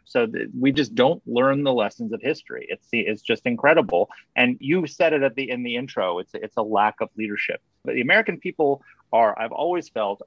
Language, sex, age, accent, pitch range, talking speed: English, male, 30-49, American, 115-160 Hz, 210 wpm